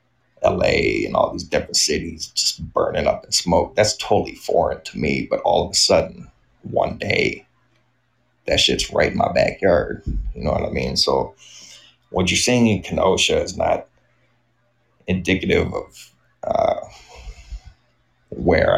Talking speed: 145 wpm